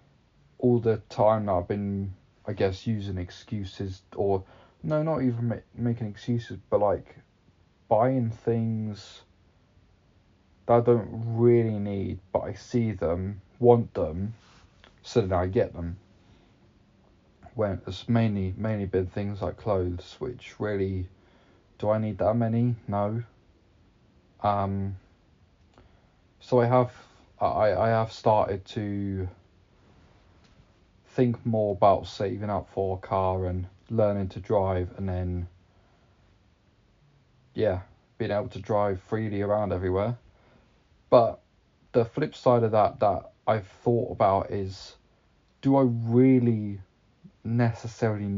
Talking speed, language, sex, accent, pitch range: 125 wpm, English, male, British, 95-115 Hz